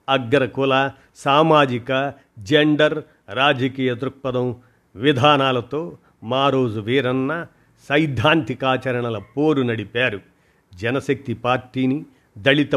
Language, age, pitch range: Telugu, 50-69, 120-145 Hz